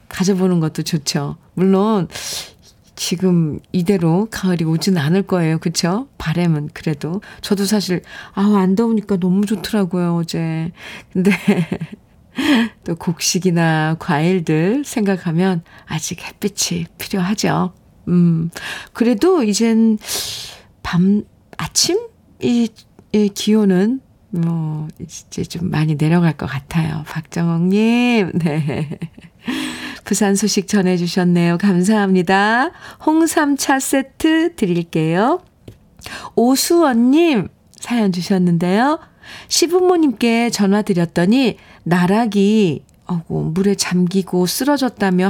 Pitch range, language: 170-215 Hz, Korean